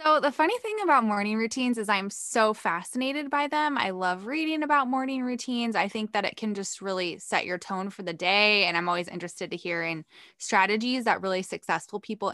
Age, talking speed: 20-39, 215 wpm